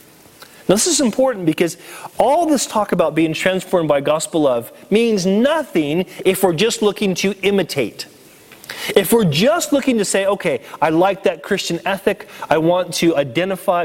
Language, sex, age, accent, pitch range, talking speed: English, male, 30-49, American, 165-210 Hz, 165 wpm